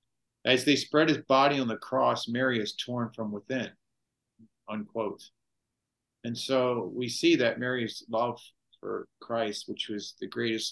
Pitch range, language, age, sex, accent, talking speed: 105-120 Hz, English, 50-69, male, American, 150 wpm